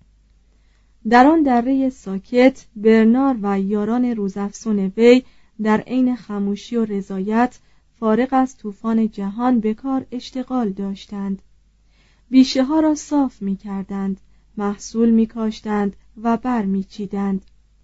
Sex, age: female, 30-49